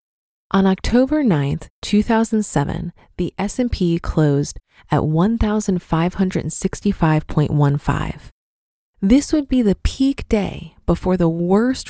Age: 20-39